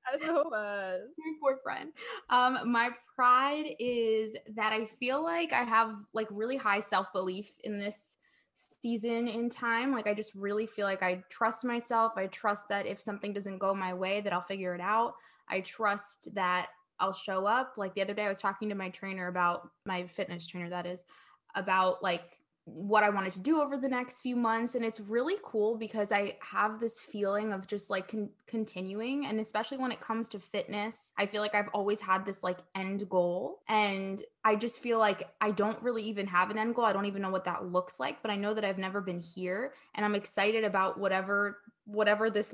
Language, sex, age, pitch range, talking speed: English, female, 20-39, 190-225 Hz, 210 wpm